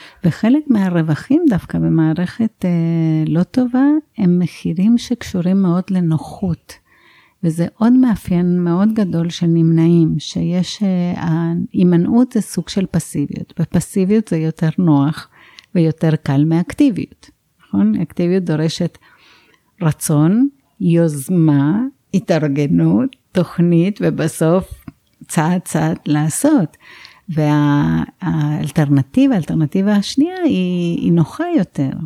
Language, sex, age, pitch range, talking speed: Hebrew, female, 60-79, 155-185 Hz, 95 wpm